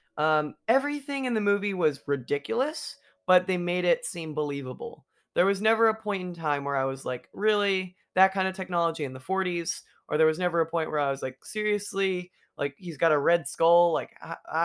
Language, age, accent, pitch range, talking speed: English, 20-39, American, 145-200 Hz, 210 wpm